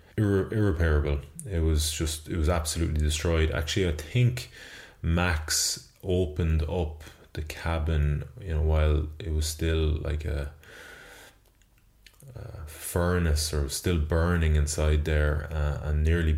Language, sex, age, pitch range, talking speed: English, male, 20-39, 75-85 Hz, 125 wpm